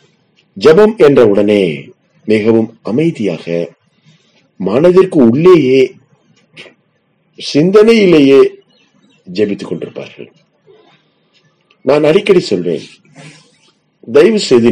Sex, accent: male, native